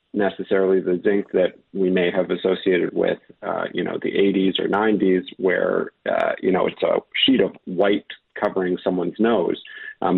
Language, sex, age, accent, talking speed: English, male, 40-59, American, 170 wpm